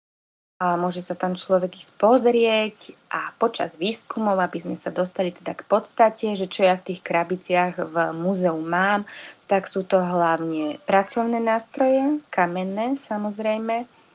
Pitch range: 175-200 Hz